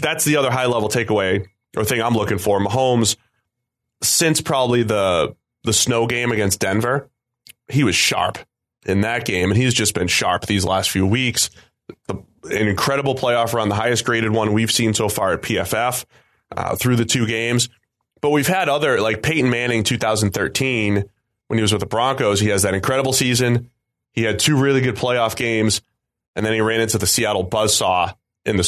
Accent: American